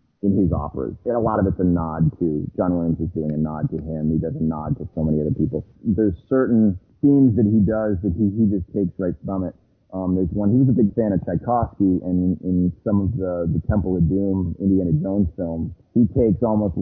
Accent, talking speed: American, 245 wpm